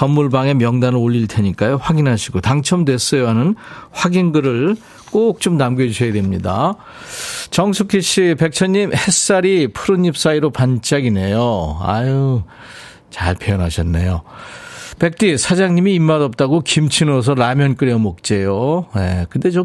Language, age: Korean, 40-59